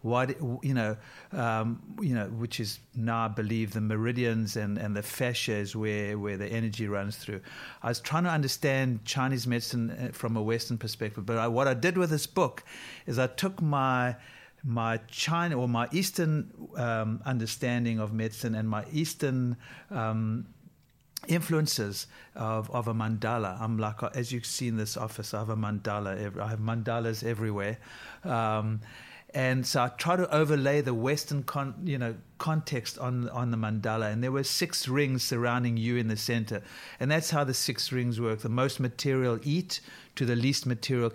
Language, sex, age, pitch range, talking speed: English, male, 50-69, 110-135 Hz, 180 wpm